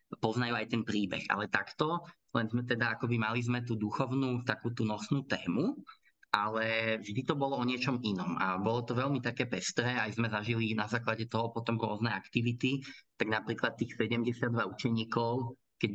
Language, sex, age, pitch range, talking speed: Slovak, male, 20-39, 105-120 Hz, 175 wpm